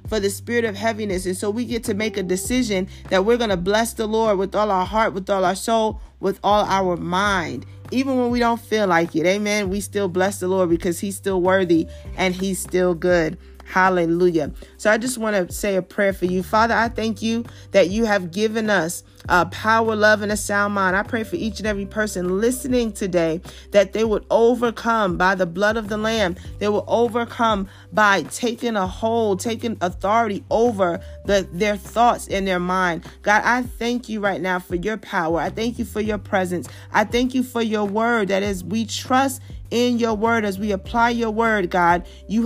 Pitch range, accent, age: 185-225 Hz, American, 30-49